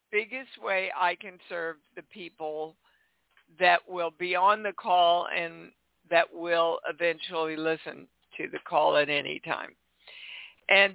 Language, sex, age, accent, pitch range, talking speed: English, female, 60-79, American, 175-225 Hz, 135 wpm